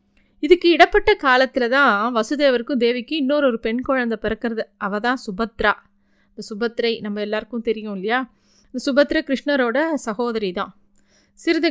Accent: native